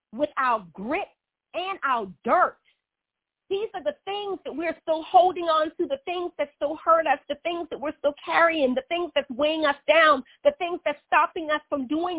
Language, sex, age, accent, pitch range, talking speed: English, female, 40-59, American, 300-370 Hz, 200 wpm